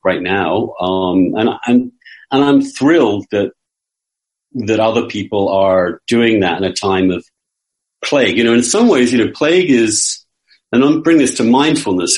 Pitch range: 115-190 Hz